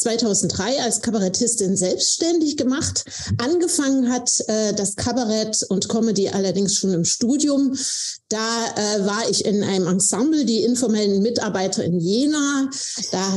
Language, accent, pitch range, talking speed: German, German, 205-260 Hz, 130 wpm